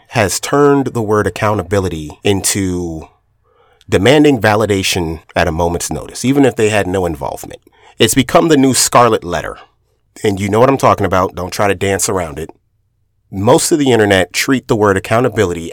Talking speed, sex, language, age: 170 wpm, male, English, 30-49